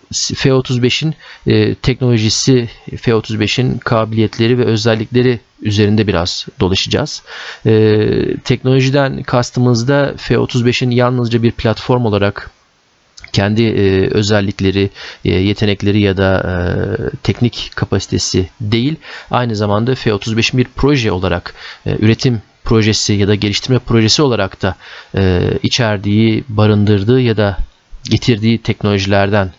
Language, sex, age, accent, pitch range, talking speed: Turkish, male, 40-59, native, 95-120 Hz, 90 wpm